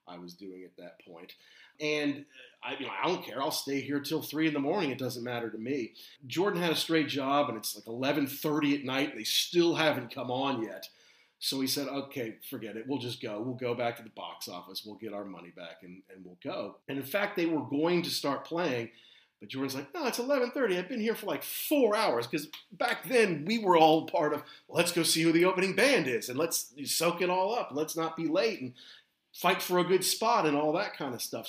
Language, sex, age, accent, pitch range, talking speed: English, male, 40-59, American, 140-190 Hz, 250 wpm